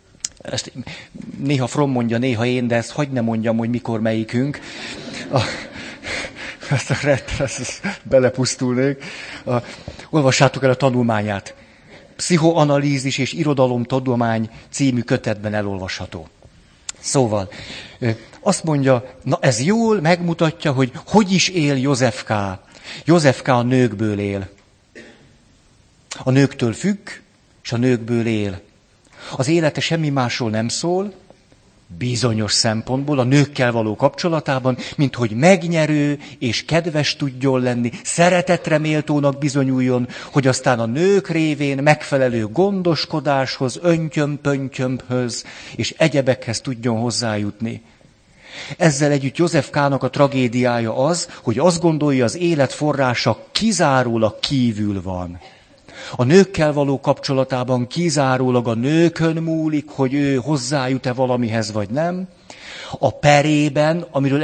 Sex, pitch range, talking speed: male, 120-150 Hz, 115 wpm